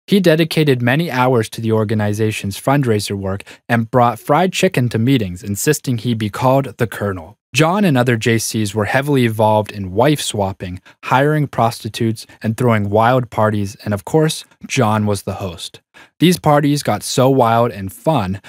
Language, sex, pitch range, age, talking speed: English, male, 105-135 Hz, 20-39, 160 wpm